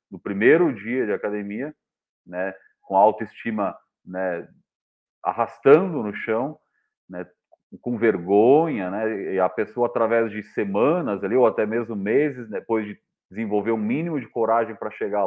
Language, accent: Portuguese, Brazilian